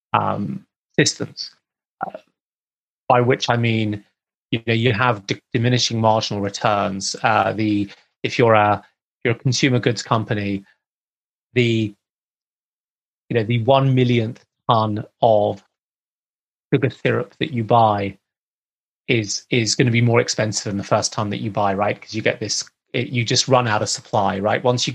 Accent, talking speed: British, 165 wpm